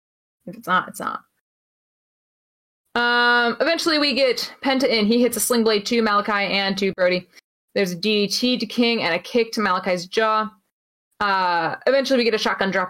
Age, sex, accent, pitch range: 20-39, female, American, 180-225 Hz